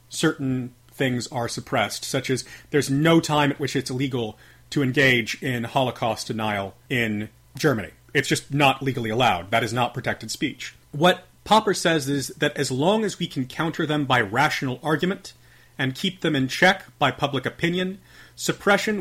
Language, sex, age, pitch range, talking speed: English, male, 30-49, 130-175 Hz, 170 wpm